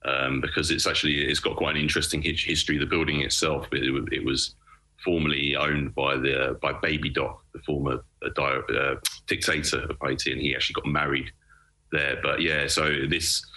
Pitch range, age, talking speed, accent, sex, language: 70-80 Hz, 30-49, 175 wpm, British, male, English